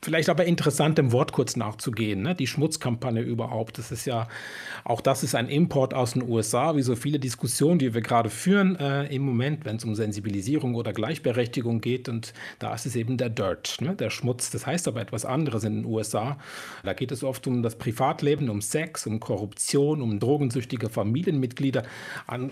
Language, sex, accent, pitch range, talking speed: German, male, German, 110-140 Hz, 190 wpm